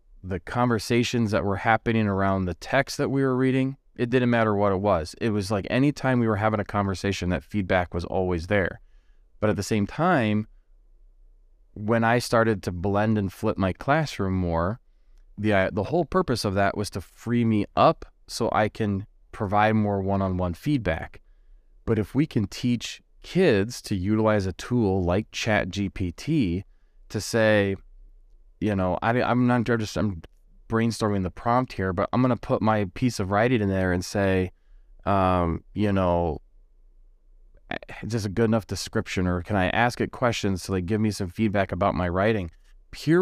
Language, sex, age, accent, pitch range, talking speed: English, male, 20-39, American, 90-115 Hz, 175 wpm